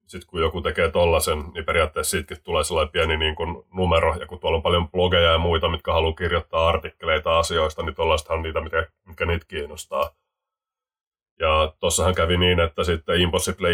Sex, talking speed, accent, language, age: male, 185 wpm, native, Finnish, 30-49